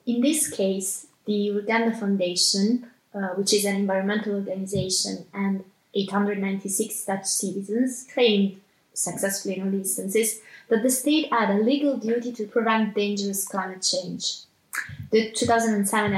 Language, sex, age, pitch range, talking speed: English, female, 20-39, 195-220 Hz, 130 wpm